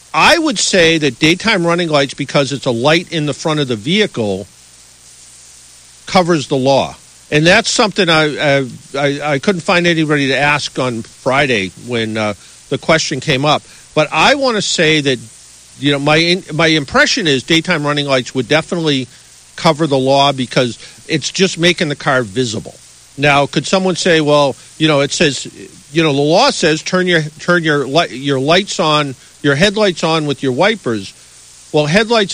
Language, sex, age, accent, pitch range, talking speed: English, male, 50-69, American, 130-165 Hz, 180 wpm